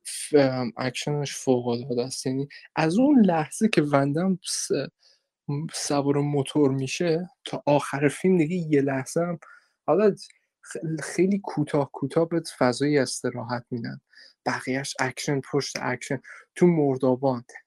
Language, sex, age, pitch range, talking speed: Persian, male, 20-39, 135-185 Hz, 120 wpm